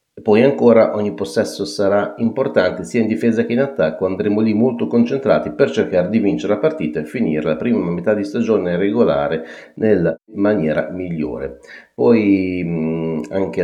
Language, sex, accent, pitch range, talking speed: Italian, male, native, 80-110 Hz, 160 wpm